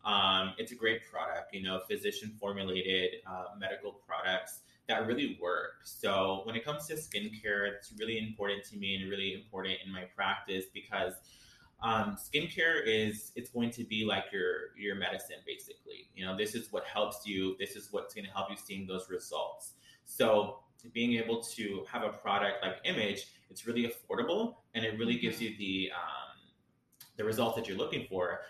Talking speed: 180 wpm